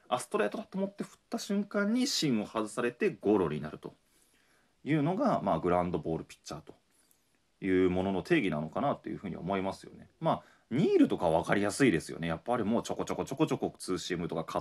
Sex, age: male, 30-49